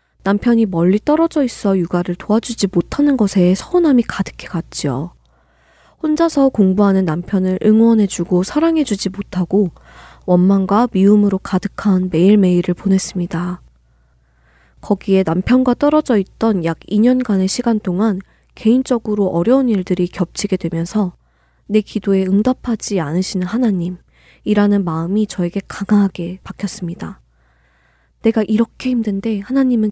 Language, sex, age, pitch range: Korean, female, 20-39, 175-225 Hz